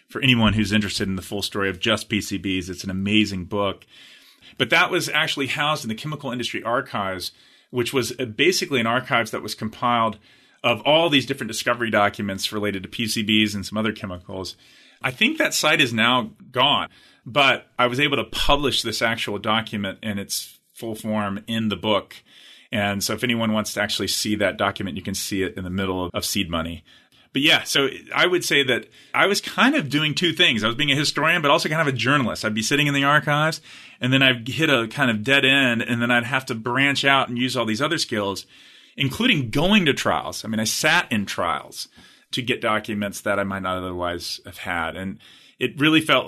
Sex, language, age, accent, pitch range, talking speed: male, English, 30-49, American, 100-130 Hz, 215 wpm